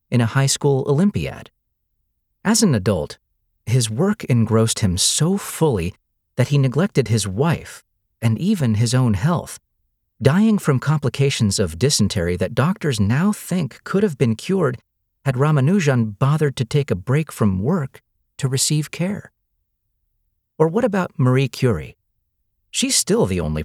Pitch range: 100-150 Hz